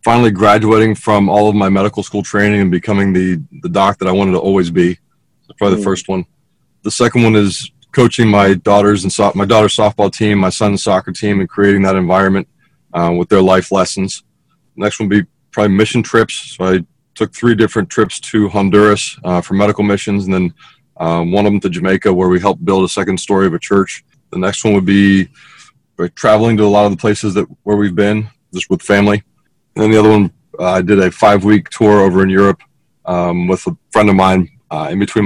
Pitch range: 95-105 Hz